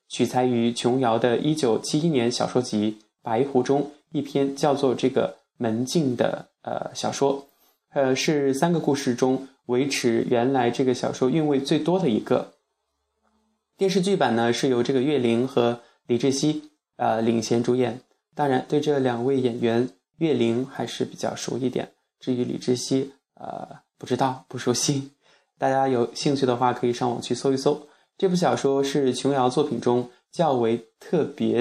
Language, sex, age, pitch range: Chinese, male, 20-39, 120-145 Hz